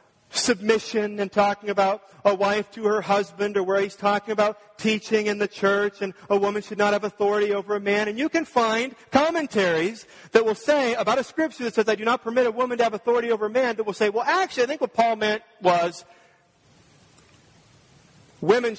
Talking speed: 210 wpm